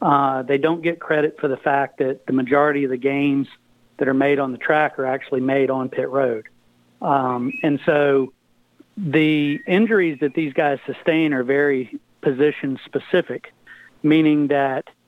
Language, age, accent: English, 40-59, American